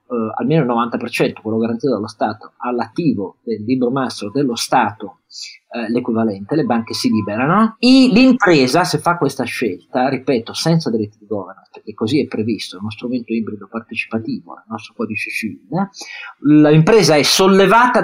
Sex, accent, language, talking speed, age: male, native, Italian, 155 wpm, 40-59